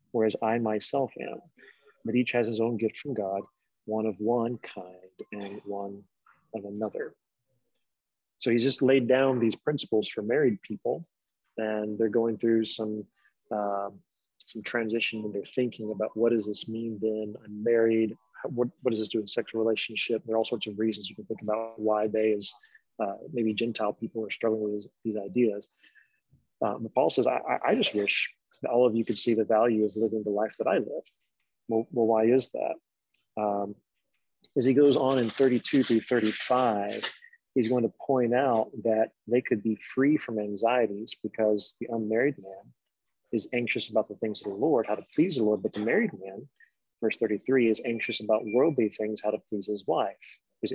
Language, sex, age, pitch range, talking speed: English, male, 30-49, 105-120 Hz, 195 wpm